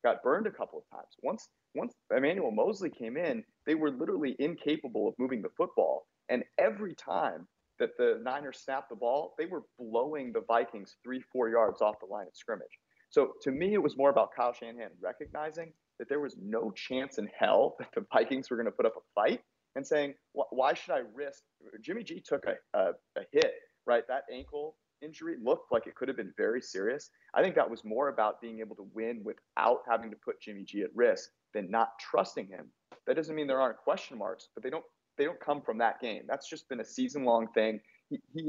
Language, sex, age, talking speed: English, male, 30-49, 220 wpm